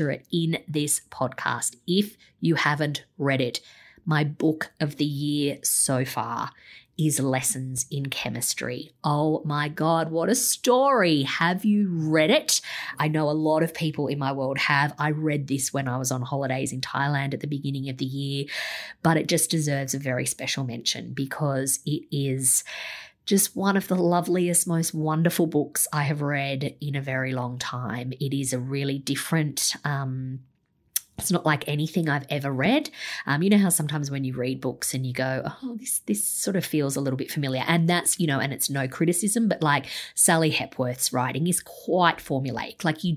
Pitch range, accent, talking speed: 135-165 Hz, Australian, 190 wpm